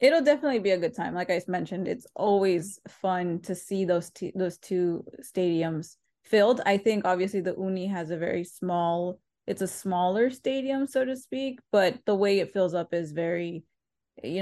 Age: 20-39